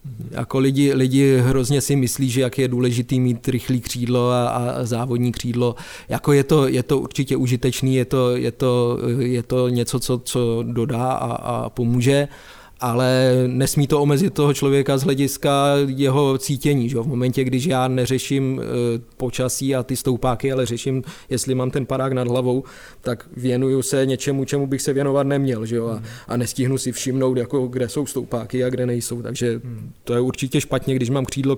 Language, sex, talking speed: Czech, male, 185 wpm